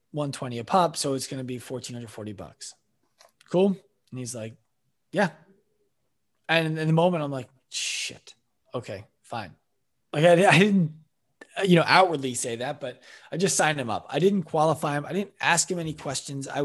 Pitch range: 120-165 Hz